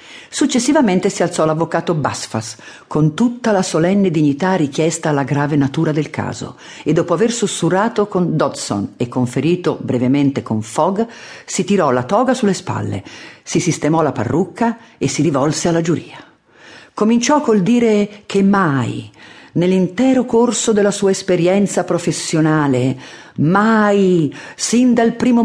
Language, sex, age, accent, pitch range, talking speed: Italian, female, 50-69, native, 160-210 Hz, 135 wpm